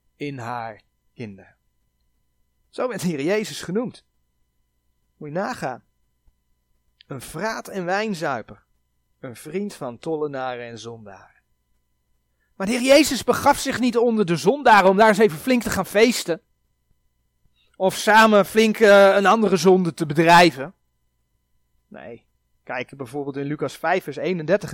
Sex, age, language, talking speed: male, 30-49, Dutch, 140 wpm